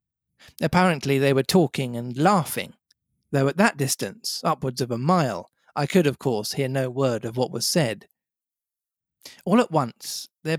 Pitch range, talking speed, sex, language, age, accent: 130-165 Hz, 165 wpm, male, English, 40-59, British